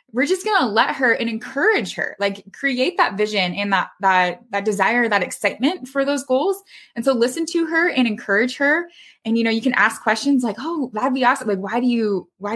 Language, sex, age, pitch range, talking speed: English, female, 20-39, 200-270 Hz, 230 wpm